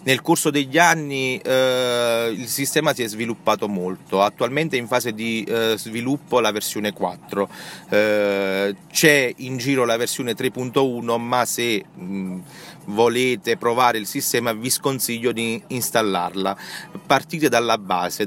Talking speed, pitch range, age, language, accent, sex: 140 wpm, 105-140 Hz, 40-59, Italian, native, male